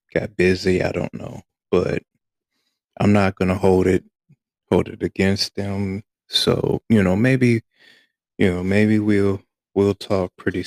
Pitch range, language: 95-105 Hz, English